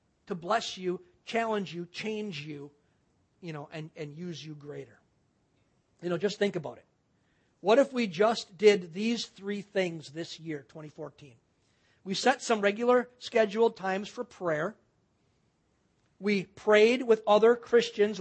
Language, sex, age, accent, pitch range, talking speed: English, male, 50-69, American, 175-225 Hz, 145 wpm